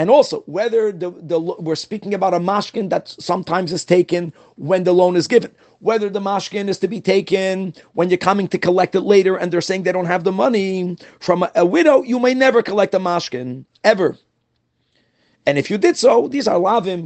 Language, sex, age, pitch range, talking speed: English, male, 40-59, 160-210 Hz, 210 wpm